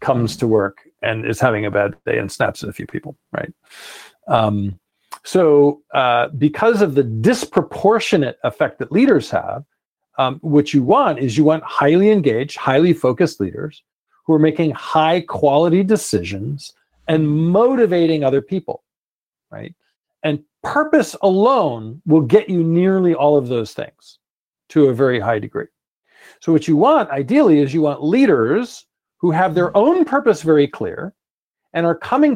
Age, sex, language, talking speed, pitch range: 40-59, male, English, 160 wpm, 140-180 Hz